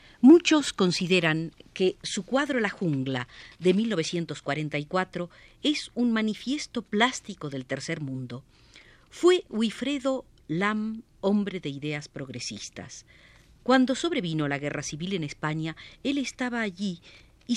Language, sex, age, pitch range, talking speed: Spanish, female, 50-69, 145-220 Hz, 115 wpm